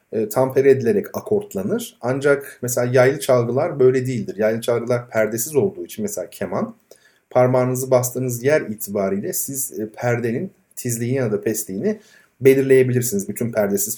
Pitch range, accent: 110-160 Hz, native